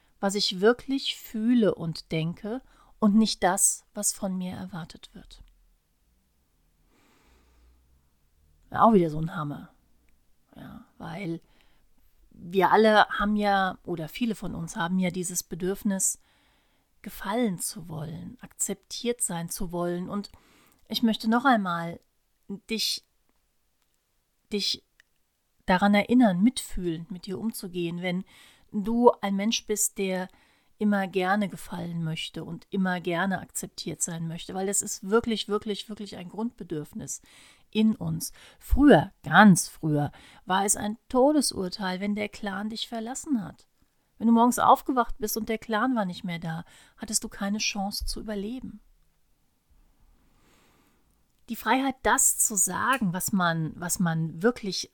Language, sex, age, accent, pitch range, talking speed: German, female, 40-59, German, 170-220 Hz, 130 wpm